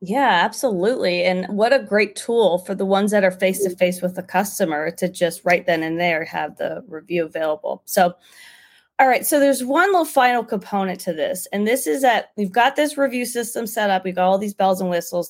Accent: American